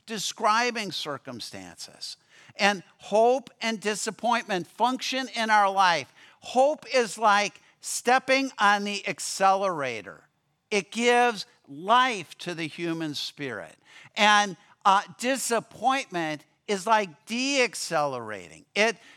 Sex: male